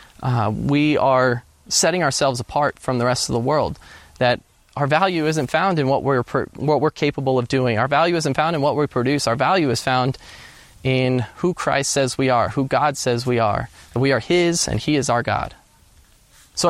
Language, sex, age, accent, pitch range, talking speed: English, male, 20-39, American, 120-145 Hz, 210 wpm